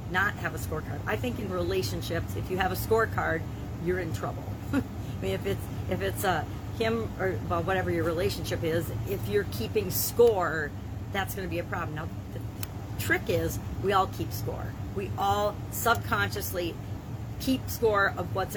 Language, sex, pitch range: English, female, 100-115 Hz